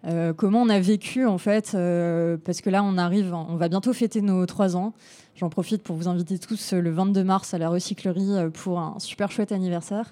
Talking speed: 225 wpm